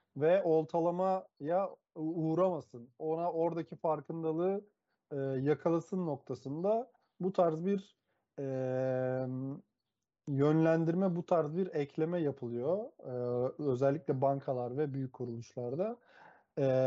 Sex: male